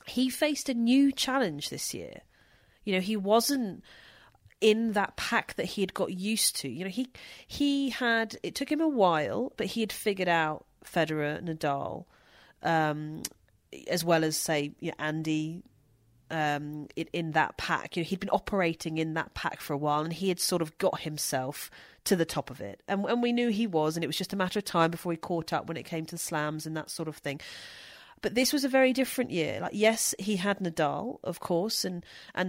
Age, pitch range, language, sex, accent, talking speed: 30-49, 160-225 Hz, English, female, British, 215 wpm